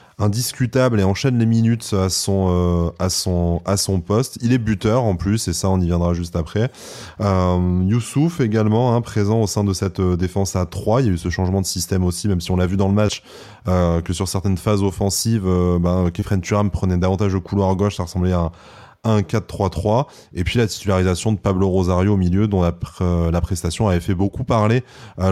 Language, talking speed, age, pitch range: French, 225 wpm, 20-39, 90-110 Hz